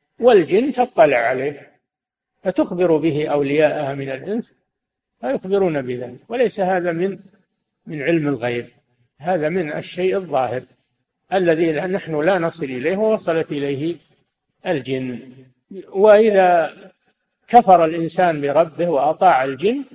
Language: Arabic